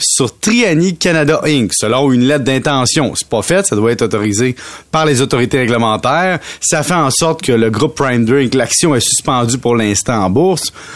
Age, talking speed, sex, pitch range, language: 30-49, 190 wpm, male, 115-170 Hz, French